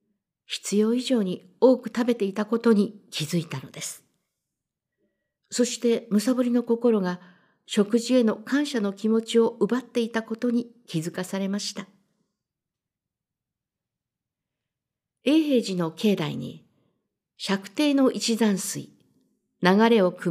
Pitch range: 185-235 Hz